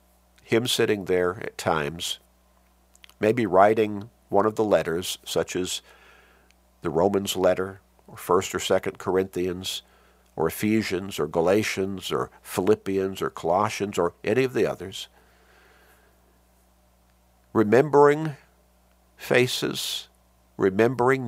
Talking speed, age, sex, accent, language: 105 wpm, 50-69, male, American, English